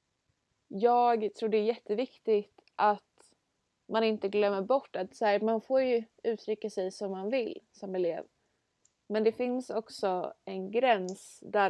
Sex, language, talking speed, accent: female, Swedish, 150 wpm, native